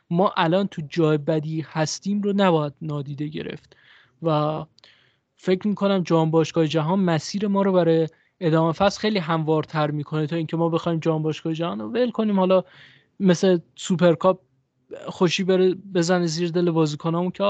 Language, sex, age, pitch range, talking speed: Persian, male, 20-39, 160-185 Hz, 155 wpm